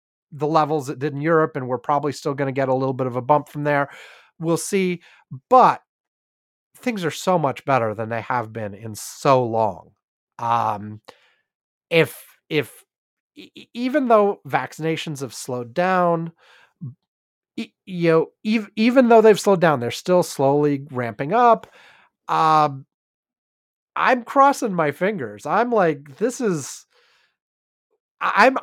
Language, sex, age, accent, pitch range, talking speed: English, male, 30-49, American, 140-195 Hz, 140 wpm